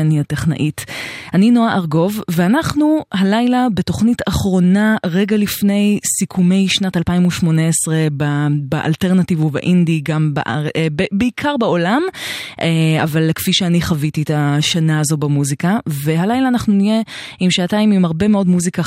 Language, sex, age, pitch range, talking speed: Hebrew, female, 20-39, 150-190 Hz, 115 wpm